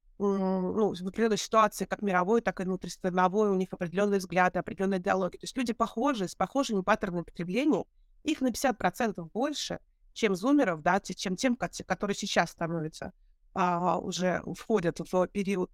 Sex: female